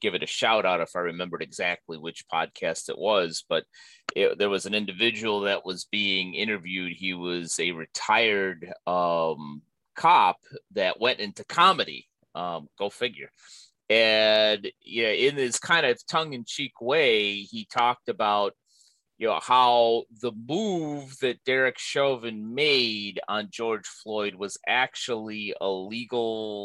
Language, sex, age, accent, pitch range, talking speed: English, male, 30-49, American, 100-145 Hz, 140 wpm